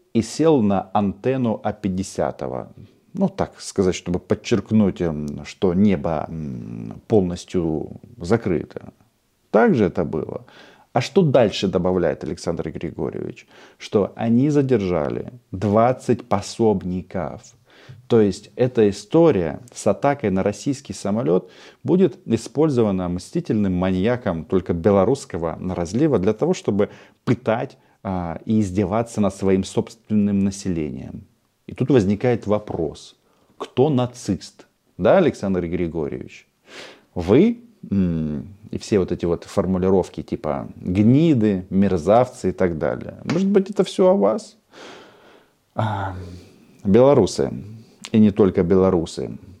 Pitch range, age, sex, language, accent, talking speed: 95-120 Hz, 40-59, male, Russian, native, 105 wpm